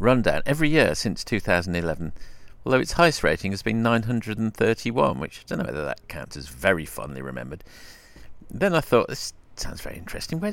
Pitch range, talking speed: 80-120 Hz, 175 wpm